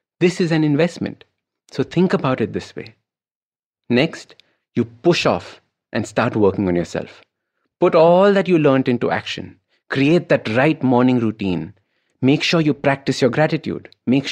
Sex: male